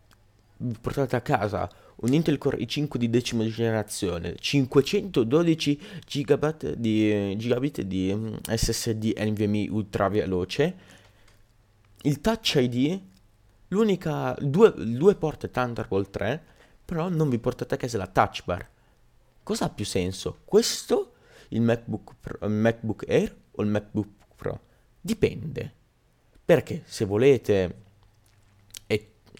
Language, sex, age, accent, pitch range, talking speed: Italian, male, 30-49, native, 105-130 Hz, 115 wpm